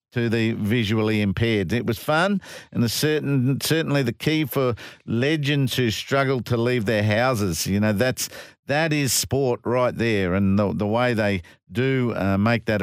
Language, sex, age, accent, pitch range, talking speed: English, male, 50-69, Australian, 115-150 Hz, 165 wpm